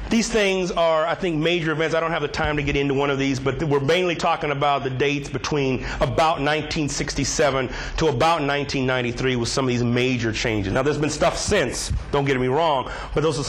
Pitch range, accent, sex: 125-175 Hz, American, male